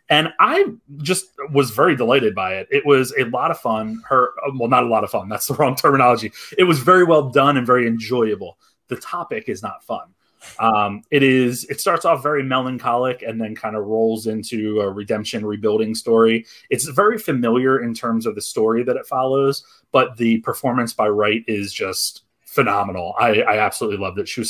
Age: 30-49